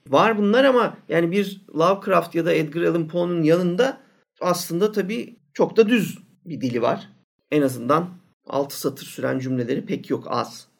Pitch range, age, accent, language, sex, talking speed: 145-205 Hz, 50-69, native, Turkish, male, 160 wpm